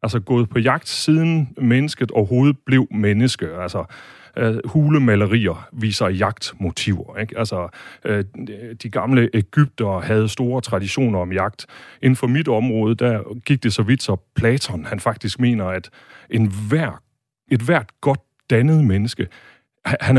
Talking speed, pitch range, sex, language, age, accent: 145 wpm, 105-135 Hz, male, Danish, 30-49, native